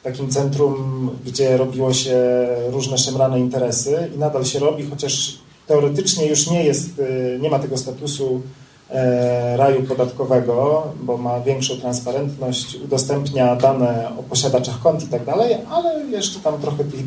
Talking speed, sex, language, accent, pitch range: 145 wpm, male, Polish, native, 130-150 Hz